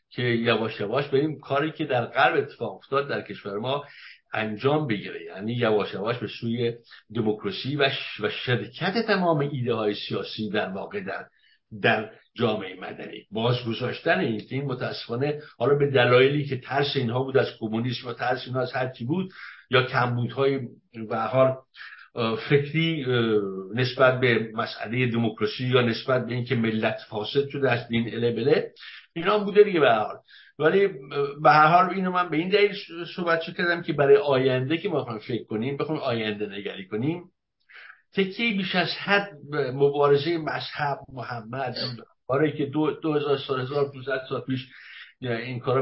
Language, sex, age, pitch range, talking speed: Persian, male, 60-79, 120-155 Hz, 160 wpm